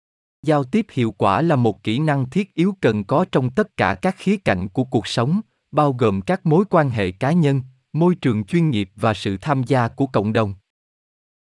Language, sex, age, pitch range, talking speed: Vietnamese, male, 20-39, 105-155 Hz, 205 wpm